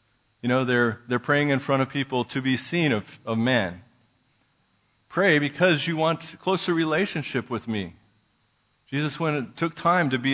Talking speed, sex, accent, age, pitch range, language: 180 wpm, male, American, 50-69, 120-150 Hz, English